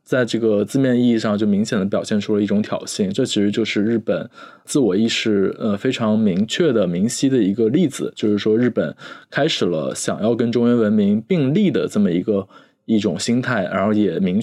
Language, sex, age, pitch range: Chinese, male, 20-39, 105-125 Hz